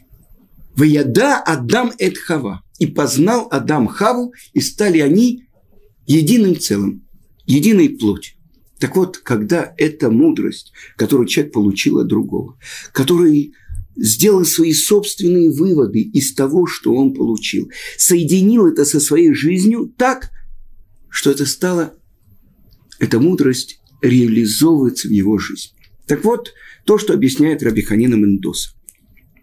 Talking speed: 115 wpm